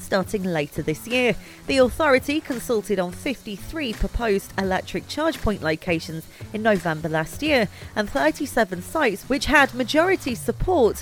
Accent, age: British, 30-49